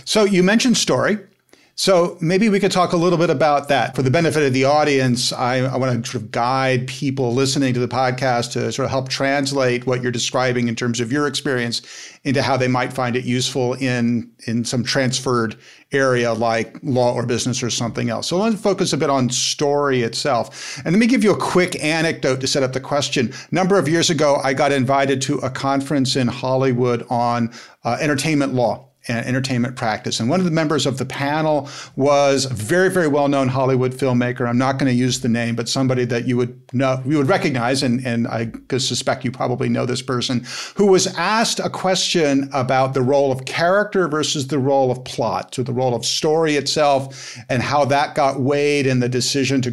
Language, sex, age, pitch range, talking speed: English, male, 50-69, 125-145 Hz, 215 wpm